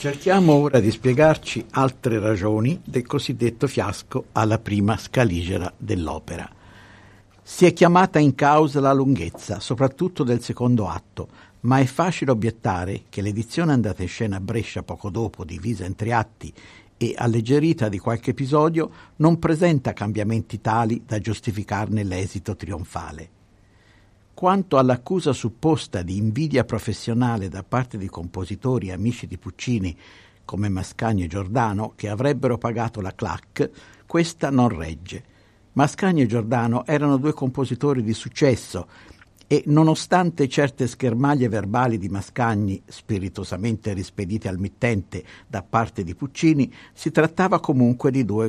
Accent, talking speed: native, 130 wpm